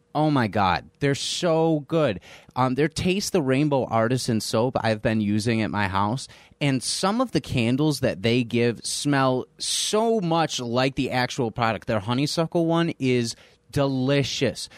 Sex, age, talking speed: male, 30-49, 160 wpm